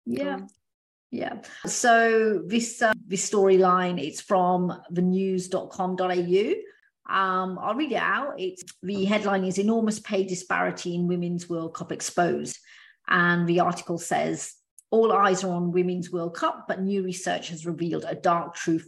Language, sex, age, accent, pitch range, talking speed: English, female, 40-59, British, 175-195 Hz, 145 wpm